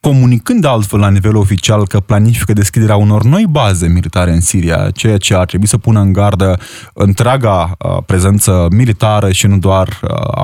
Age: 20-39